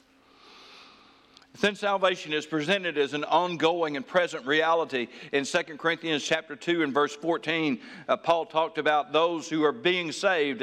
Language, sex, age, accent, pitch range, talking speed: English, male, 60-79, American, 140-185 Hz, 150 wpm